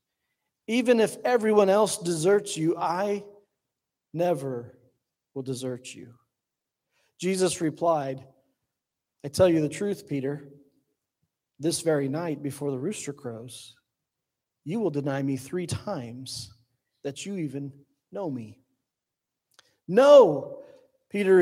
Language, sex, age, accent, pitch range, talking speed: English, male, 40-59, American, 140-215 Hz, 110 wpm